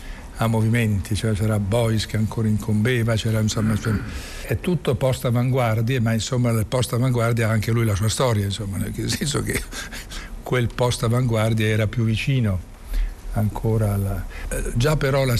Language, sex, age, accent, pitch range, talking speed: Italian, male, 60-79, native, 105-120 Hz, 150 wpm